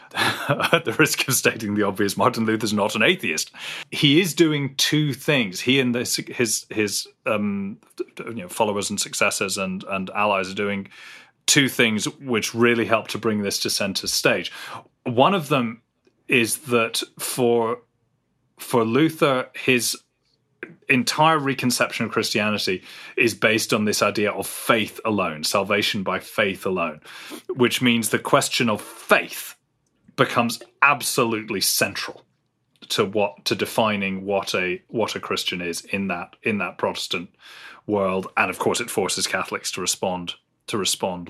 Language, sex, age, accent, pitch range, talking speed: English, male, 30-49, British, 105-130 Hz, 150 wpm